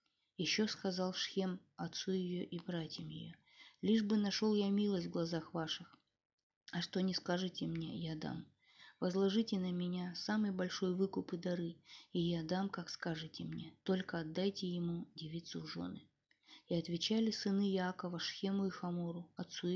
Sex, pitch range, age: female, 165-190 Hz, 20-39